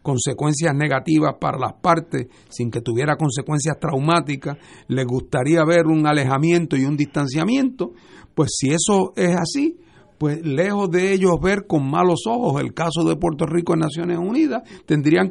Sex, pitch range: male, 135-180 Hz